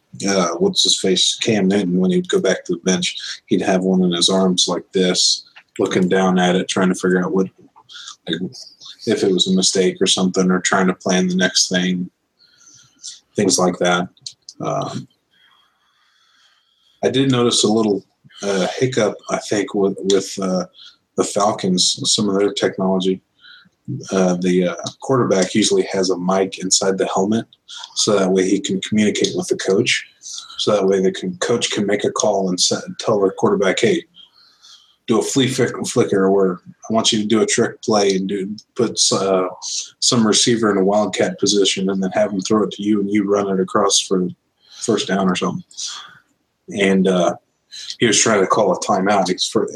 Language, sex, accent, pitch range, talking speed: English, male, American, 90-100 Hz, 190 wpm